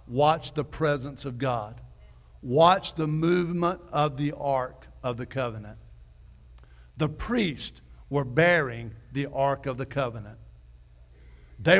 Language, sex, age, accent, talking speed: English, male, 60-79, American, 120 wpm